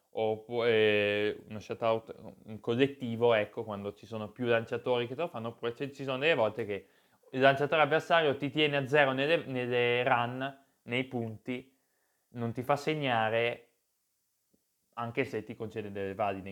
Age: 20-39